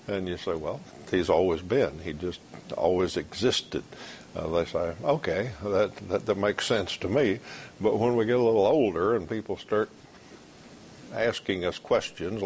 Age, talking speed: 60-79, 170 wpm